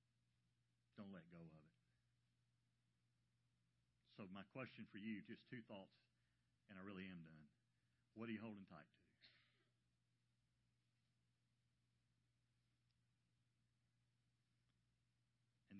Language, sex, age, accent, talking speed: English, male, 50-69, American, 95 wpm